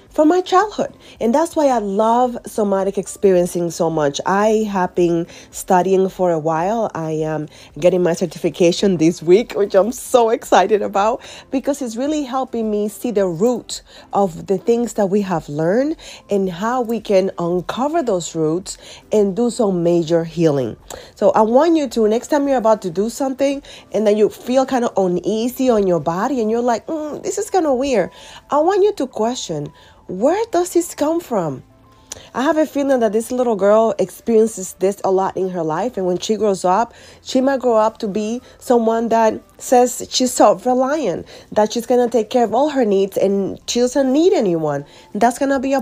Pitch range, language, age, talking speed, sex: 185-255 Hz, English, 30-49, 200 wpm, female